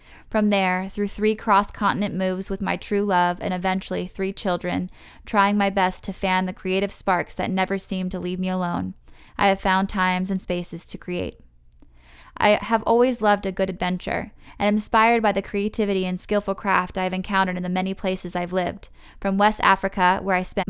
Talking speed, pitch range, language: 195 wpm, 180-200 Hz, English